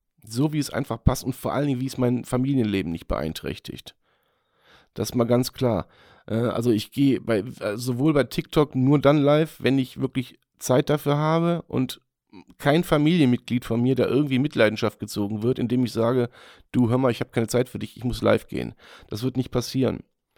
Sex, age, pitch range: male, 40-59, 115-140 Hz